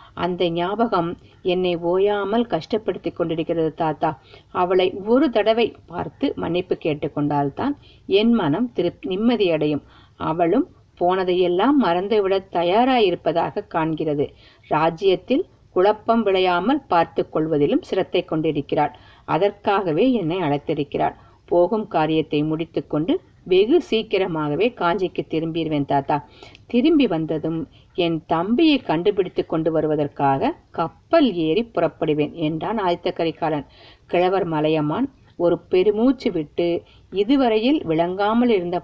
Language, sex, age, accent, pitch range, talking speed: Tamil, female, 50-69, native, 155-210 Hz, 95 wpm